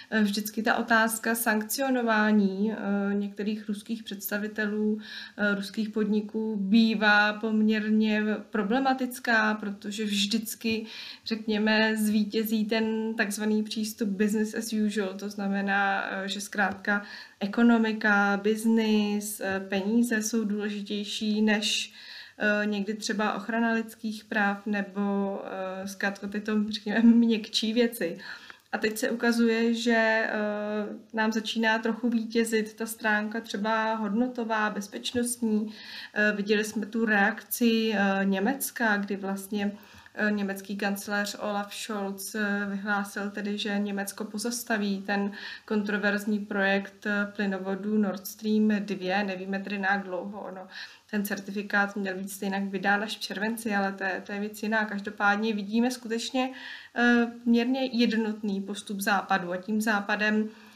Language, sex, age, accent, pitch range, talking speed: Czech, female, 20-39, native, 205-225 Hz, 110 wpm